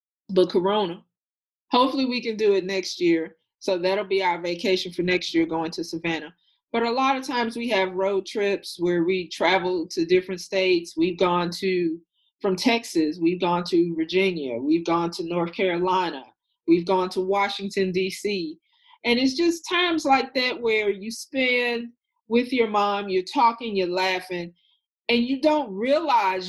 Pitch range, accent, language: 180-255 Hz, American, English